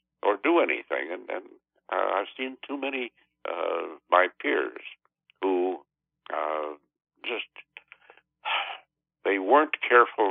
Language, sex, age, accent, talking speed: English, male, 60-79, American, 110 wpm